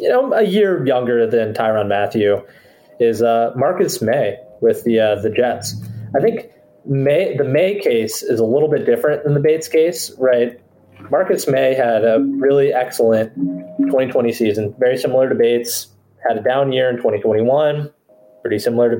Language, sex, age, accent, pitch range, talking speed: English, male, 20-39, American, 110-140 Hz, 170 wpm